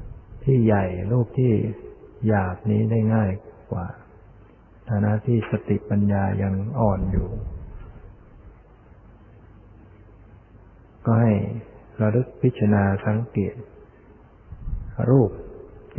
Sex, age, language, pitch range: male, 60-79, Thai, 100-115 Hz